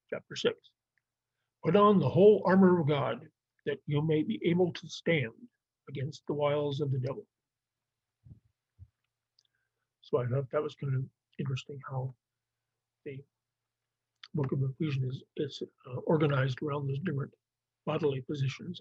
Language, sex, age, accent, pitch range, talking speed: English, male, 50-69, American, 130-165 Hz, 140 wpm